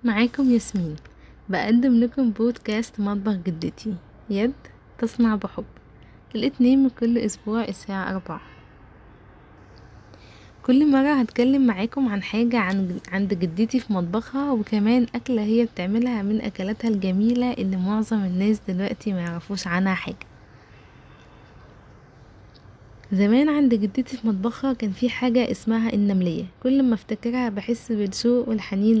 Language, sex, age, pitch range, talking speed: Arabic, female, 20-39, 185-240 Hz, 120 wpm